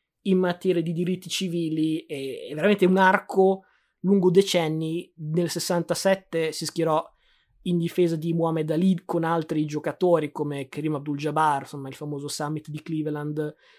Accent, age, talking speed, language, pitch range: native, 20-39, 140 wpm, Italian, 145-175 Hz